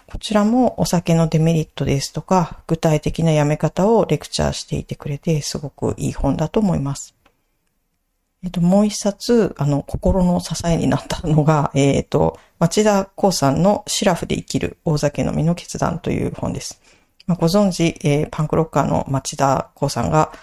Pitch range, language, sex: 145-180 Hz, Japanese, female